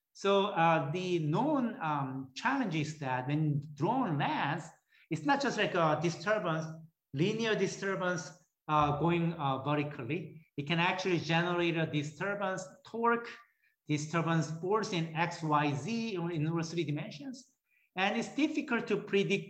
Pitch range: 150-195 Hz